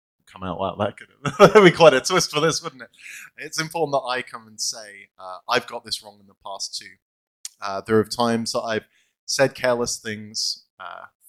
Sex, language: male, English